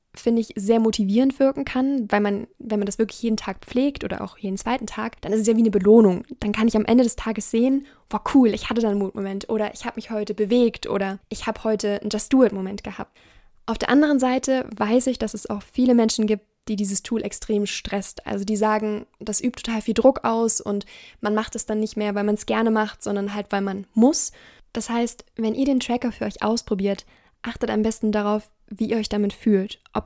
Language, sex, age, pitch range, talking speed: German, female, 10-29, 210-235 Hz, 235 wpm